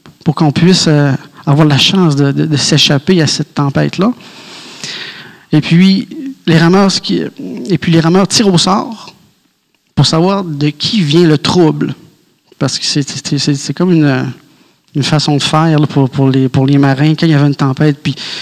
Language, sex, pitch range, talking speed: French, male, 140-170 Hz, 195 wpm